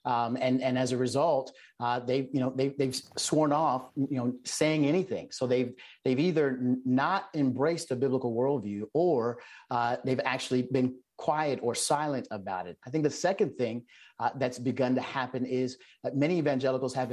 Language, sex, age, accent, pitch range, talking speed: English, male, 40-59, American, 125-145 Hz, 185 wpm